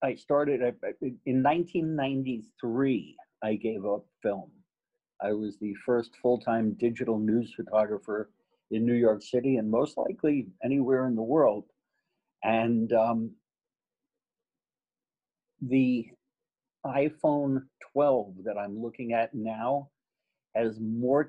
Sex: male